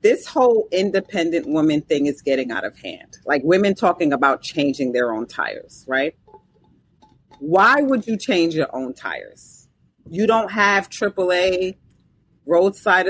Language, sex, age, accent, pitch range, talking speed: English, female, 40-59, American, 170-270 Hz, 140 wpm